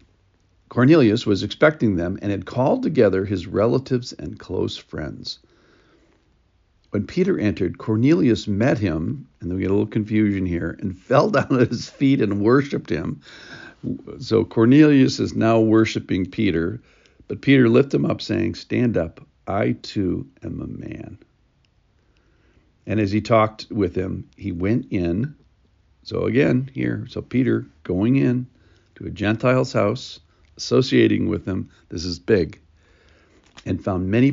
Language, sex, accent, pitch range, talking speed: English, male, American, 90-115 Hz, 145 wpm